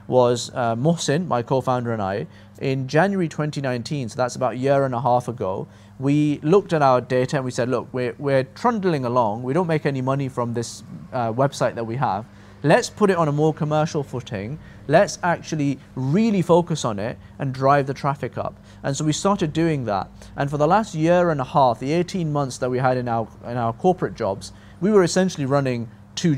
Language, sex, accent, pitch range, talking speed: English, male, British, 120-150 Hz, 210 wpm